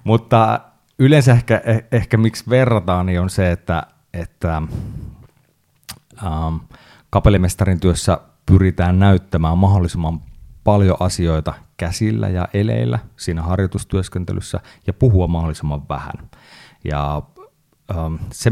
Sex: male